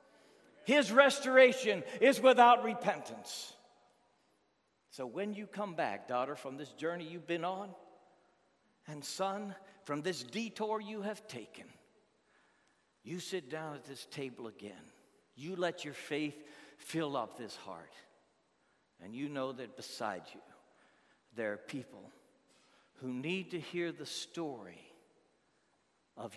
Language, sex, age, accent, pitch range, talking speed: English, male, 60-79, American, 120-180 Hz, 125 wpm